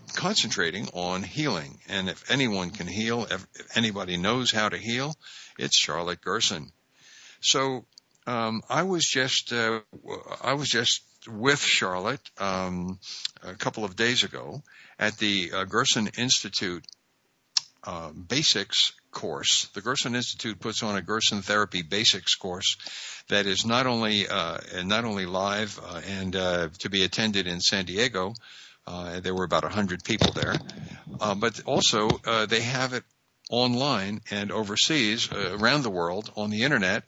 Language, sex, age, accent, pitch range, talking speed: English, male, 60-79, American, 100-125 Hz, 150 wpm